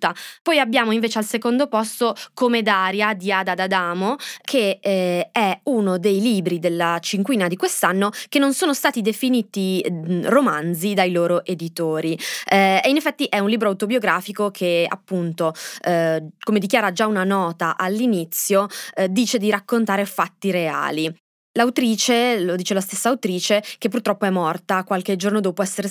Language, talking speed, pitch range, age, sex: Italian, 160 wpm, 180-225 Hz, 20-39, female